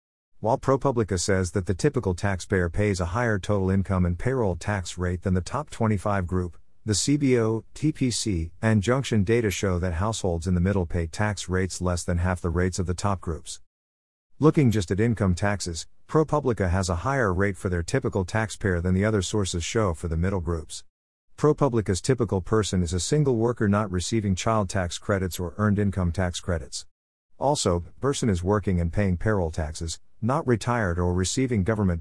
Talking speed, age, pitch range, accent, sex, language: 185 wpm, 50-69, 90-110 Hz, American, male, English